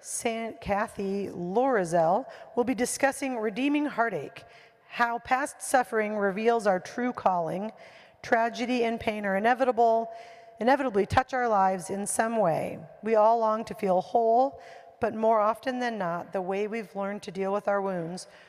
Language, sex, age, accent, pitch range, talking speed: English, female, 40-59, American, 190-230 Hz, 155 wpm